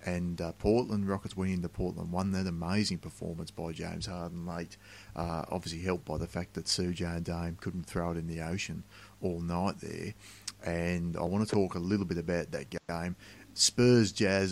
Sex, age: male, 30-49